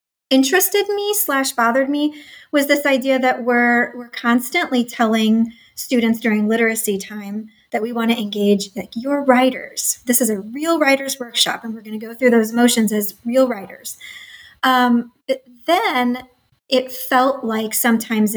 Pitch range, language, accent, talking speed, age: 225-265 Hz, English, American, 155 wpm, 30-49